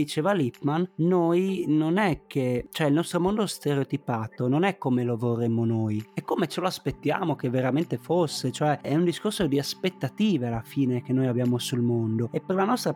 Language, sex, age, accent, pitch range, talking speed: Italian, male, 30-49, native, 130-170 Hz, 195 wpm